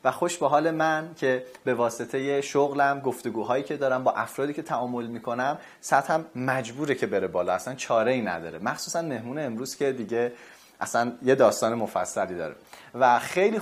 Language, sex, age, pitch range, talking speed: Persian, male, 30-49, 115-145 Hz, 170 wpm